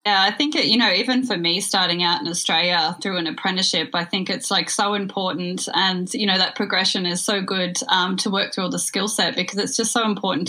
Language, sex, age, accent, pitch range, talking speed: English, female, 10-29, Australian, 180-205 Hz, 245 wpm